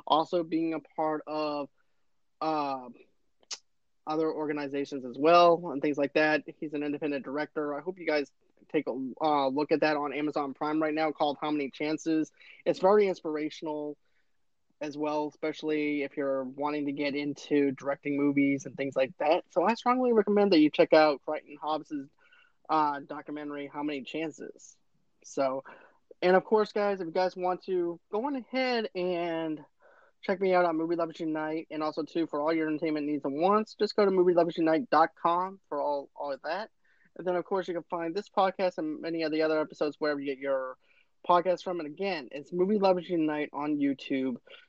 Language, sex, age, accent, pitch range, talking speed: English, male, 20-39, American, 145-175 Hz, 185 wpm